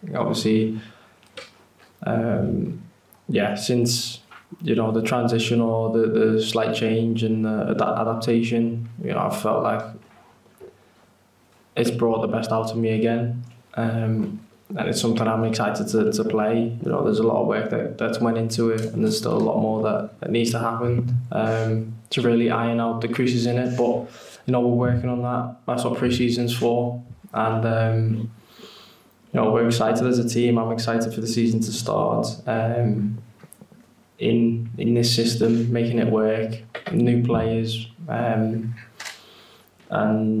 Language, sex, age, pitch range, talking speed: English, male, 10-29, 110-120 Hz, 165 wpm